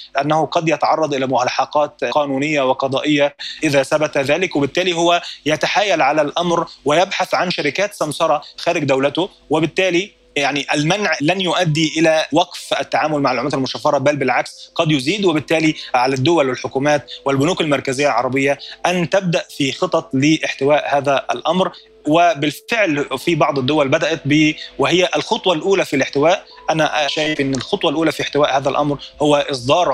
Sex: male